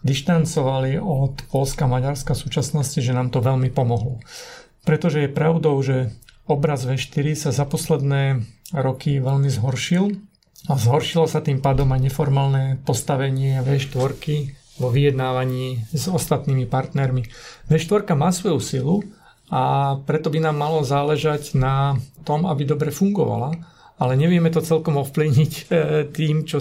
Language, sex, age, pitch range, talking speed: Slovak, male, 40-59, 135-155 Hz, 135 wpm